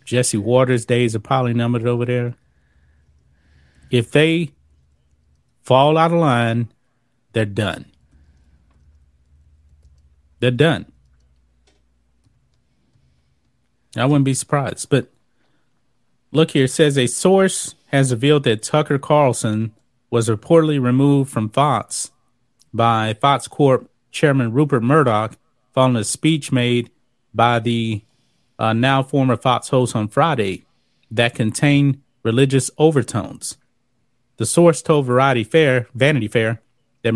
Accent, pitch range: American, 115-140 Hz